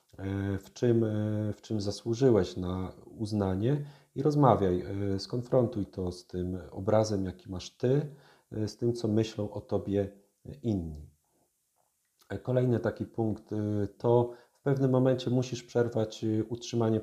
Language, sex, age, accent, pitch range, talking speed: Polish, male, 40-59, native, 100-120 Hz, 120 wpm